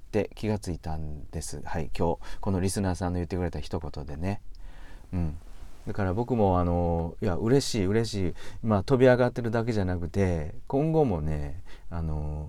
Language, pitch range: Japanese, 80-105 Hz